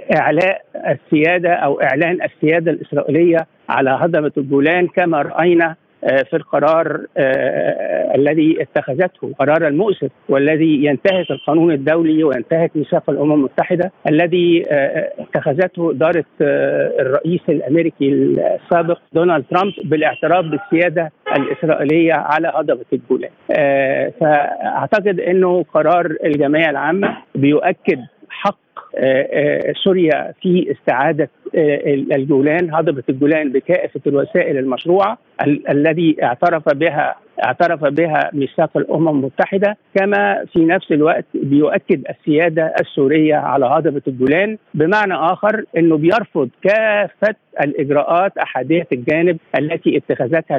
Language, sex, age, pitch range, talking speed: Arabic, male, 50-69, 145-180 Hz, 100 wpm